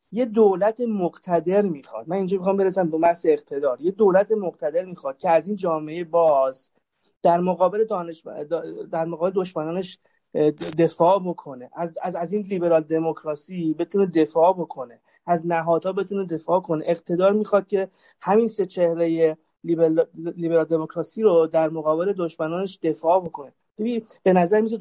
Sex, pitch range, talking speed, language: male, 165-200 Hz, 145 wpm, Persian